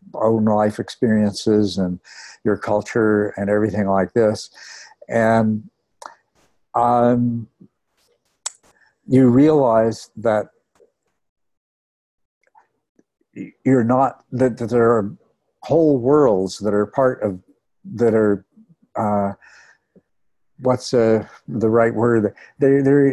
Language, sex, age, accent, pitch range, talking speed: English, male, 60-79, American, 105-125 Hz, 90 wpm